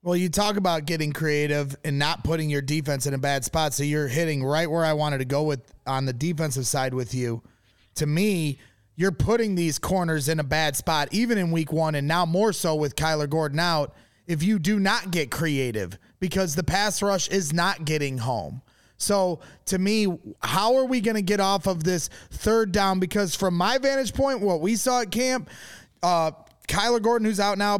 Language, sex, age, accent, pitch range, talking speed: English, male, 30-49, American, 160-215 Hz, 210 wpm